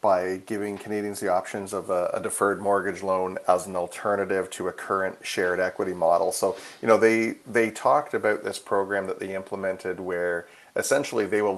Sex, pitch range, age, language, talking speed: male, 90-105 Hz, 40-59, English, 180 wpm